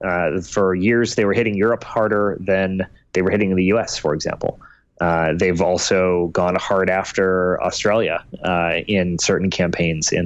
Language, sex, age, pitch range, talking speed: English, male, 30-49, 85-100 Hz, 165 wpm